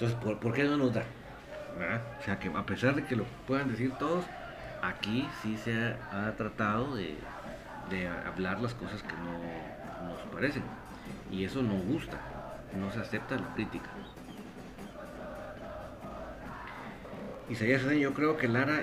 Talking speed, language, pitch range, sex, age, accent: 145 wpm, Spanish, 110-135 Hz, male, 50-69, Mexican